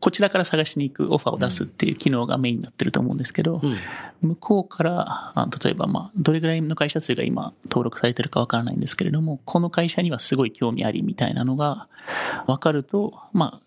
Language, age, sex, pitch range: Japanese, 30-49, male, 130-165 Hz